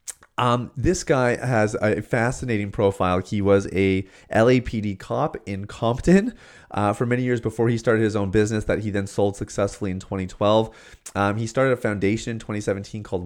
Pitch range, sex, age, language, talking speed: 100-120 Hz, male, 30-49, English, 175 wpm